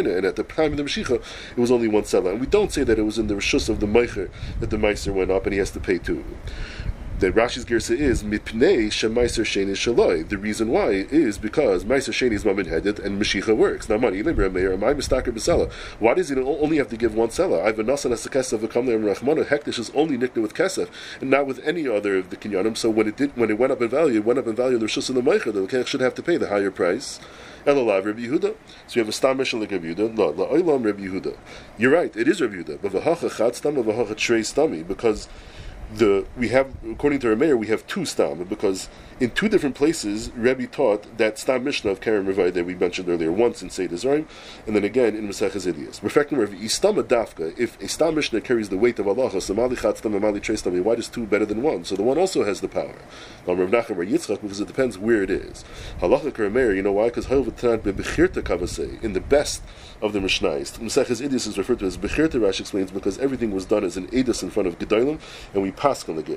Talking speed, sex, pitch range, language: 225 wpm, male, 100-125 Hz, English